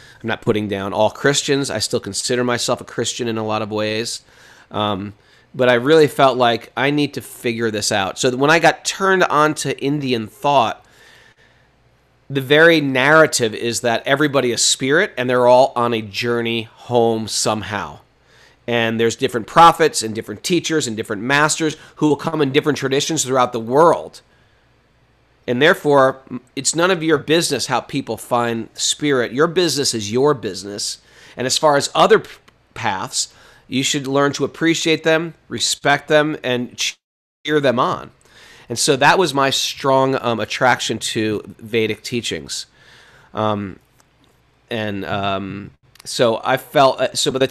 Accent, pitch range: American, 115-145 Hz